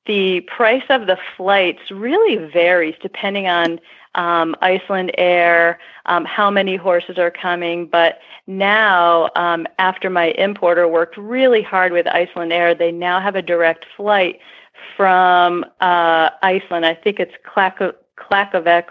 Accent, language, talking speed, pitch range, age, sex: American, English, 135 wpm, 170-195 Hz, 40-59, female